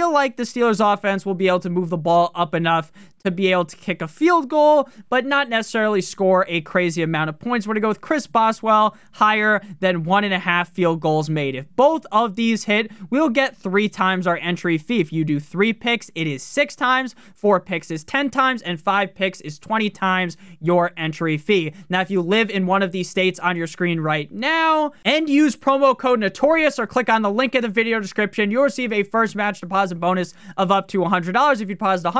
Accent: American